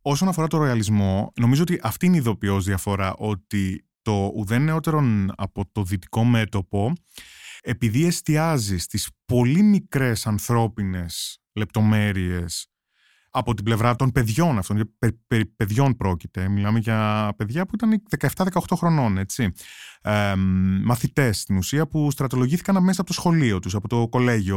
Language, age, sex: Greek, 20-39, male